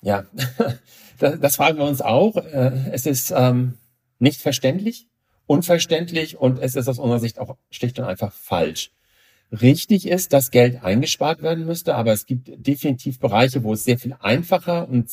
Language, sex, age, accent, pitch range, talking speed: German, male, 50-69, German, 115-145 Hz, 160 wpm